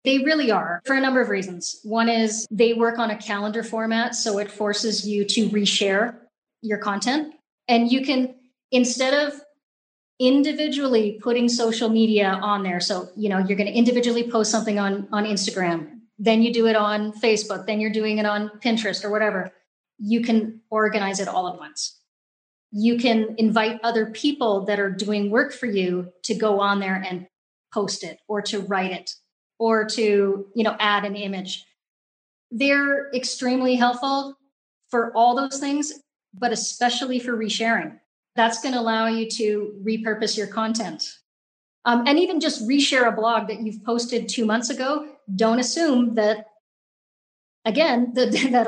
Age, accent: 30-49, American